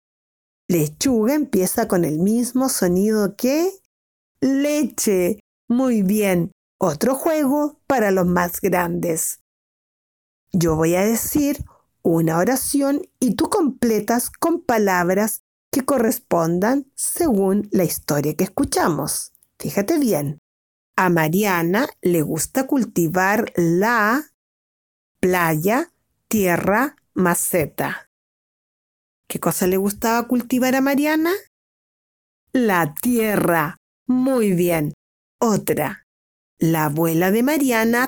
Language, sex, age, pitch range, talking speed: Spanish, female, 40-59, 175-260 Hz, 95 wpm